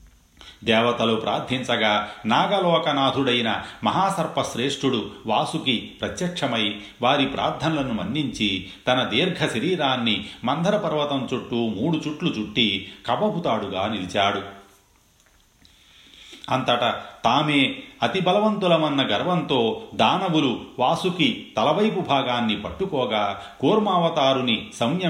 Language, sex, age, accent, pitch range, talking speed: Telugu, male, 40-59, native, 105-155 Hz, 65 wpm